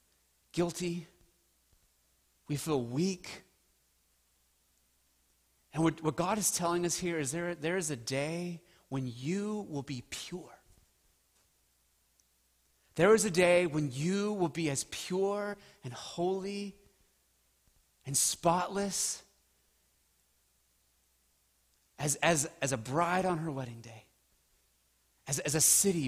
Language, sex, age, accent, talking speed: English, male, 30-49, American, 115 wpm